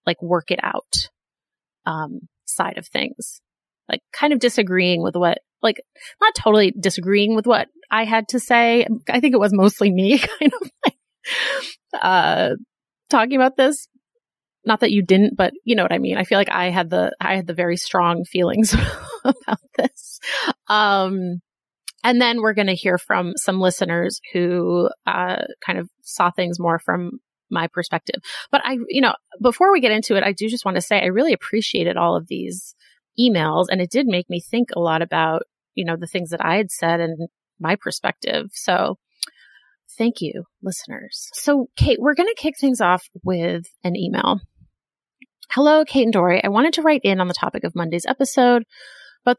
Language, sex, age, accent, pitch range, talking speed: English, female, 30-49, American, 175-245 Hz, 185 wpm